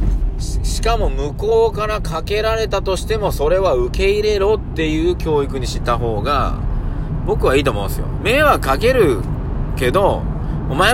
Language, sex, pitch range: Japanese, male, 110-155 Hz